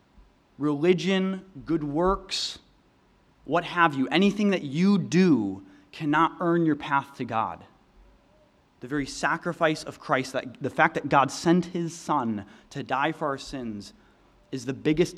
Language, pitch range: English, 120-165 Hz